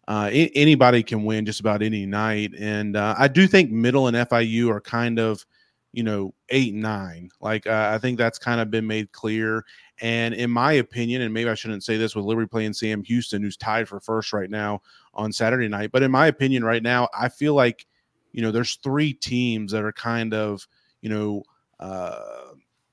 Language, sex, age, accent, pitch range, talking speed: English, male, 30-49, American, 110-120 Hz, 205 wpm